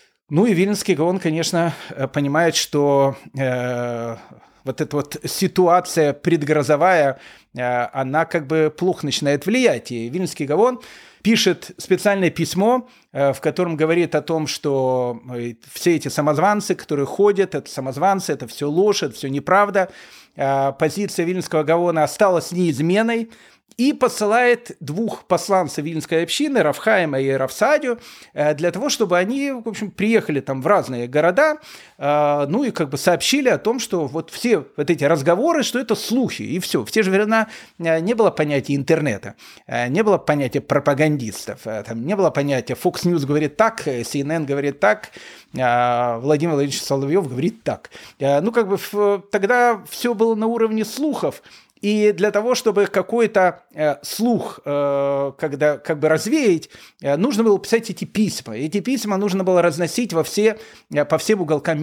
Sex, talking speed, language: male, 145 wpm, Russian